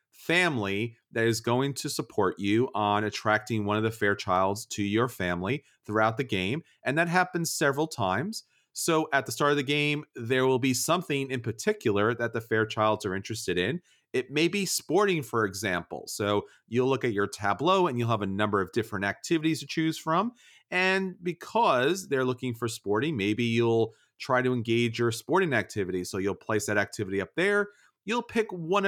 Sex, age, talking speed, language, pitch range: male, 30-49, 185 wpm, English, 110-170 Hz